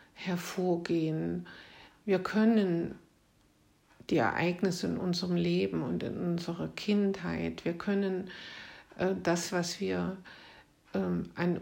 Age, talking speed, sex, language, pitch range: 60-79, 95 wpm, female, German, 170-195 Hz